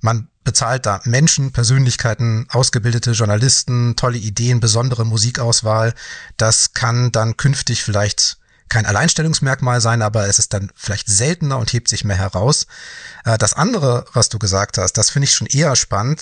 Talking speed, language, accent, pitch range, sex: 155 wpm, German, German, 110-135 Hz, male